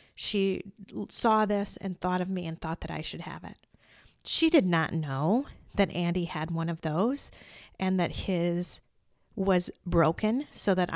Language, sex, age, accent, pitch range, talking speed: English, female, 40-59, American, 170-200 Hz, 170 wpm